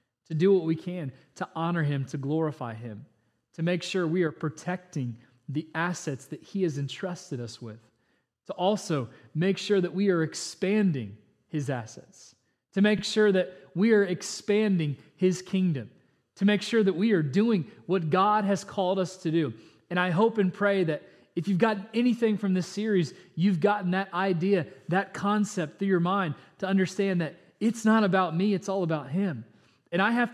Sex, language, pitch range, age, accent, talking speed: male, English, 165-210 Hz, 30-49, American, 185 wpm